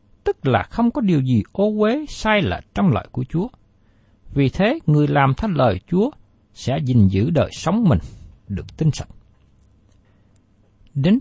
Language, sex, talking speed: Vietnamese, male, 165 wpm